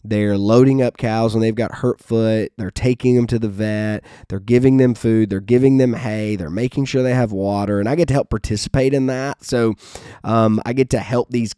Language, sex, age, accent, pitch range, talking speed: English, male, 20-39, American, 105-125 Hz, 230 wpm